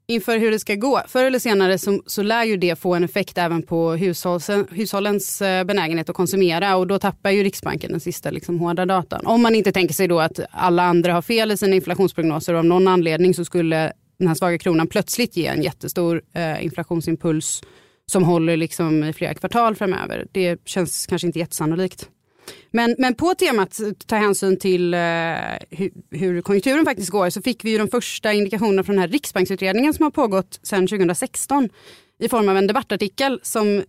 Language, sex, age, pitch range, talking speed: Swedish, female, 30-49, 175-215 Hz, 190 wpm